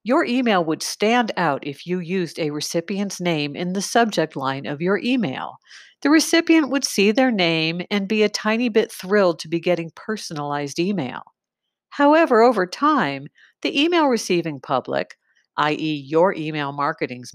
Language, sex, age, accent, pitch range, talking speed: English, female, 50-69, American, 155-240 Hz, 160 wpm